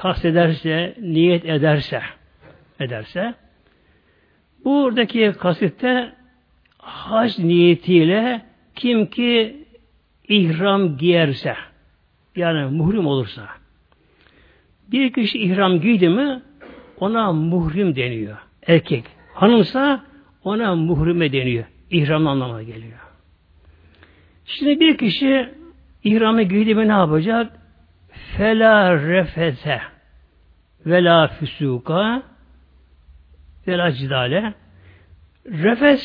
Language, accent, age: Turkish, native, 60-79